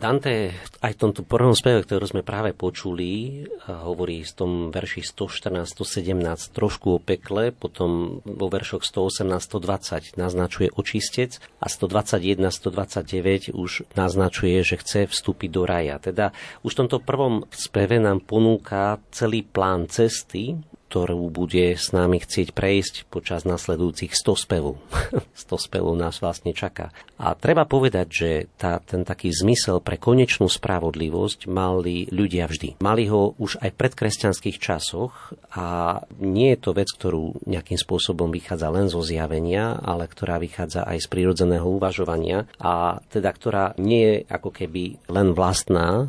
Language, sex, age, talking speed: Slovak, male, 40-59, 140 wpm